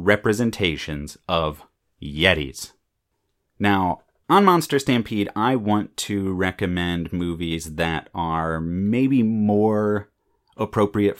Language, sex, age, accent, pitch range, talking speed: English, male, 30-49, American, 90-115 Hz, 90 wpm